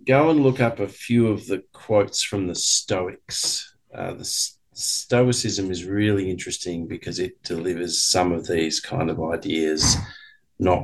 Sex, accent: male, Australian